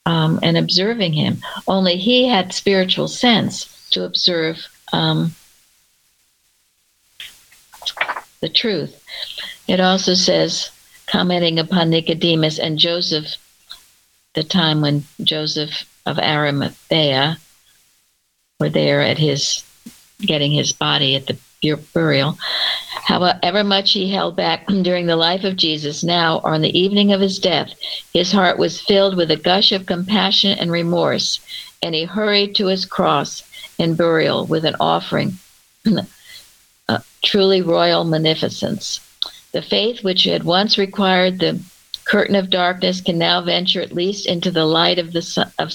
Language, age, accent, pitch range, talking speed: English, 60-79, American, 160-190 Hz, 135 wpm